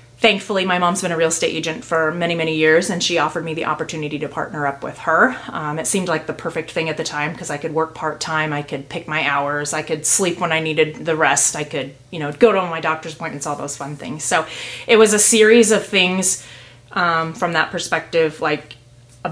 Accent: American